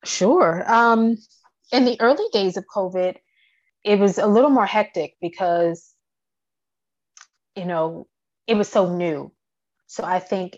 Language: English